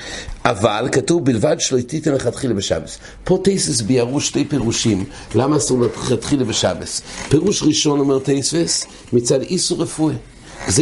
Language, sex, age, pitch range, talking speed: English, male, 60-79, 115-150 Hz, 130 wpm